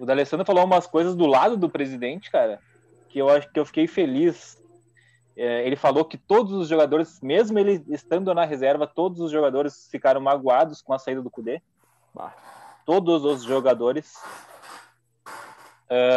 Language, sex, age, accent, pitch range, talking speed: Portuguese, male, 20-39, Brazilian, 125-160 Hz, 165 wpm